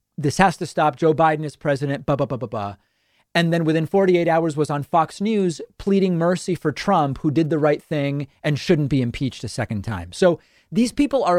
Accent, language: American, English